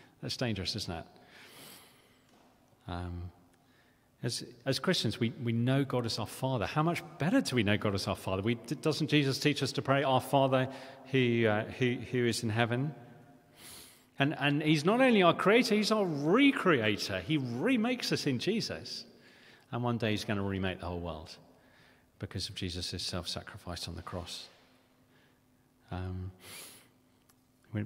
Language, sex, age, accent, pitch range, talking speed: English, male, 40-59, British, 90-130 Hz, 165 wpm